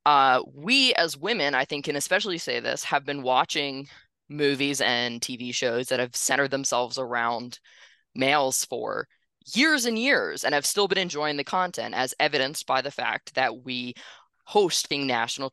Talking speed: 170 wpm